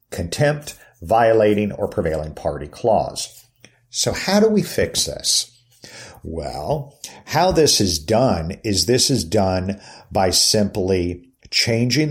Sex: male